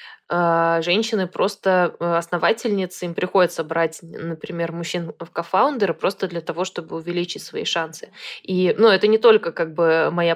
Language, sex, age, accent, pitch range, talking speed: Russian, female, 20-39, native, 165-205 Hz, 145 wpm